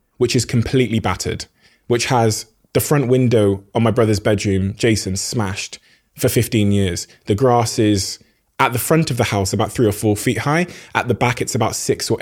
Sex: male